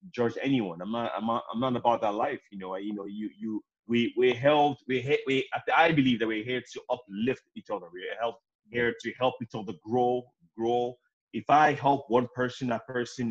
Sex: male